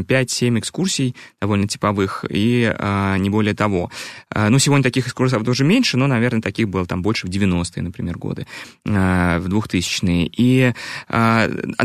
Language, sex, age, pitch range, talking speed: Russian, male, 20-39, 100-130 Hz, 160 wpm